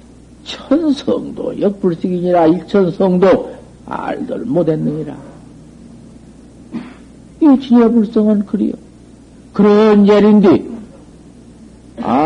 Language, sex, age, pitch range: Korean, male, 60-79, 170-220 Hz